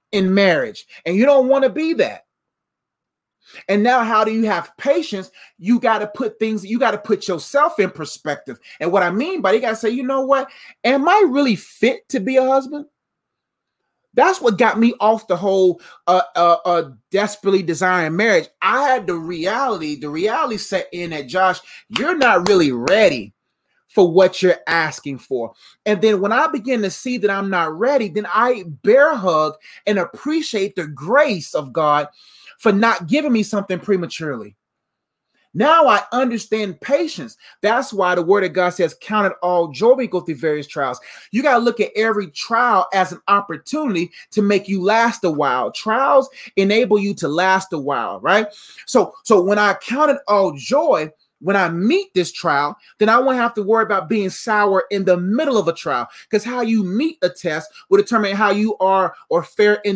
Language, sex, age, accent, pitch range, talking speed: English, male, 30-49, American, 180-245 Hz, 190 wpm